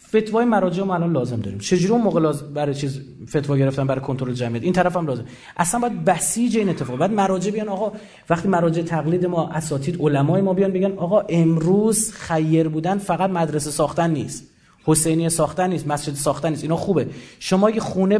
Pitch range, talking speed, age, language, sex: 160-210 Hz, 185 wpm, 30-49, Persian, male